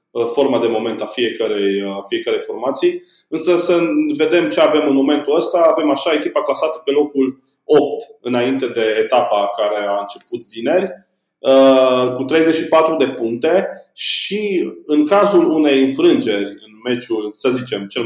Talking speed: 145 wpm